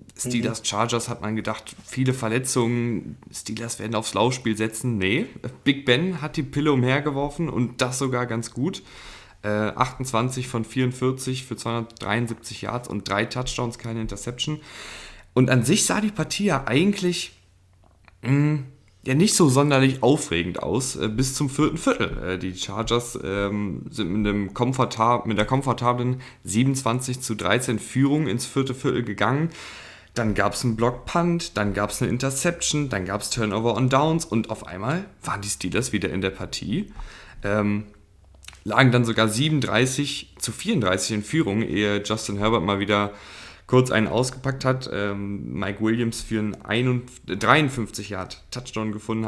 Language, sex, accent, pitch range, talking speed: German, male, German, 105-130 Hz, 150 wpm